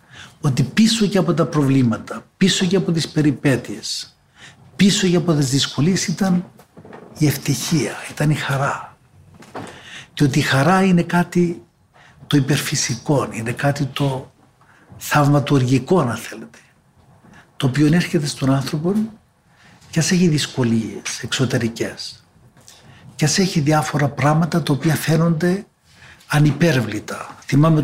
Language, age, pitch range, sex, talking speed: Greek, 60-79, 130-175 Hz, male, 120 wpm